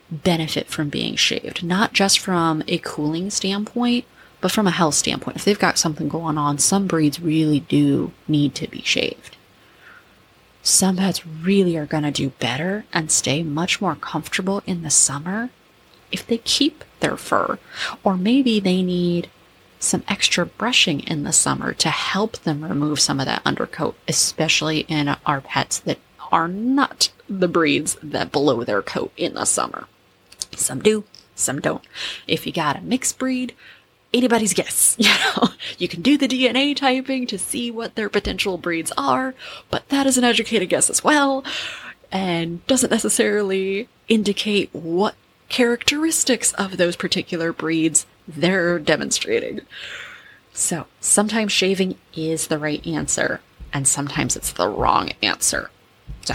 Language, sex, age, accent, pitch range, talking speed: English, female, 20-39, American, 160-220 Hz, 155 wpm